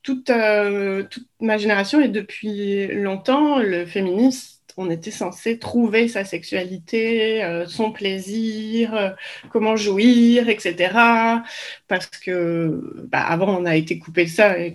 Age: 20-39